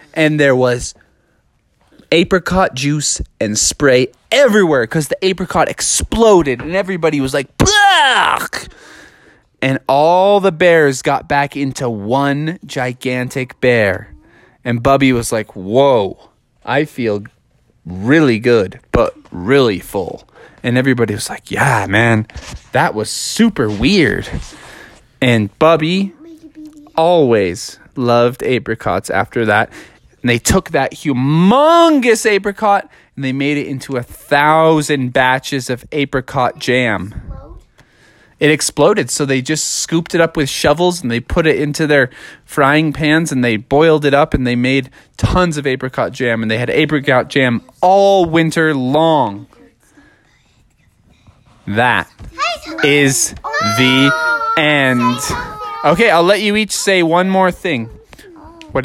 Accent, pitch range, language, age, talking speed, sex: American, 125-165 Hz, English, 20-39, 125 wpm, male